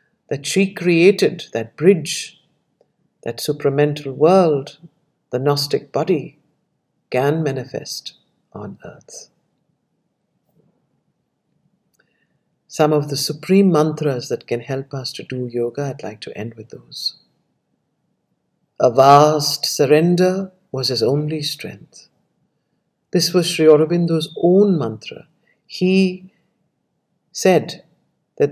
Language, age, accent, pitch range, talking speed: English, 50-69, Indian, 140-175 Hz, 105 wpm